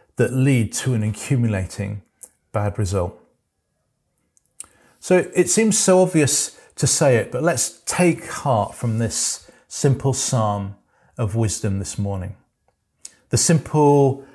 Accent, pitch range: British, 105-130 Hz